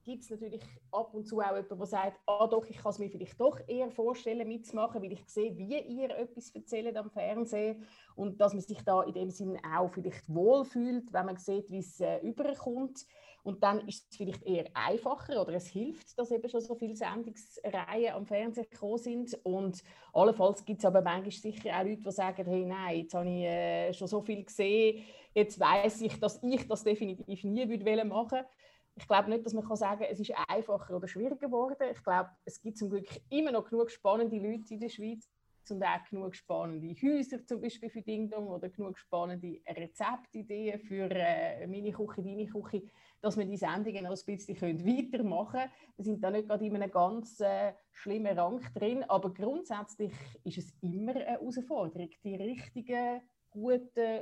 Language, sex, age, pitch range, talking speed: German, female, 30-49, 190-230 Hz, 195 wpm